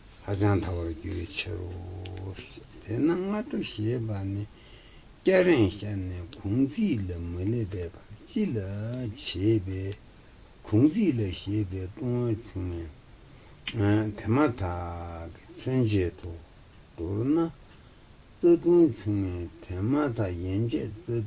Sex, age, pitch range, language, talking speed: male, 60-79, 90-120 Hz, Italian, 35 wpm